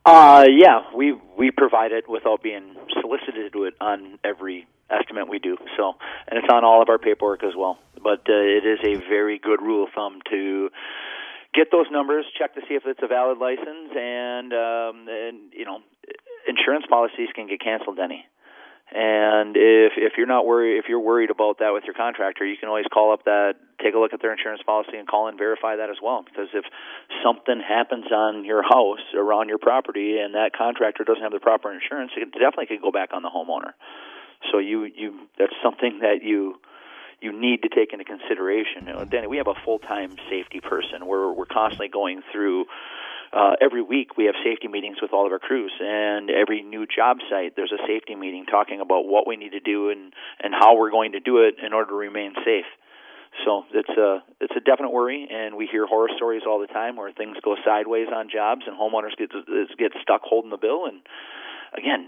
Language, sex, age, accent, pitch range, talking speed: English, male, 40-59, American, 105-170 Hz, 215 wpm